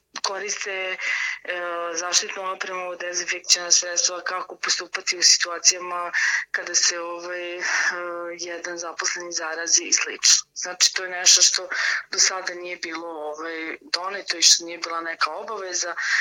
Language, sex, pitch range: Croatian, female, 175-210 Hz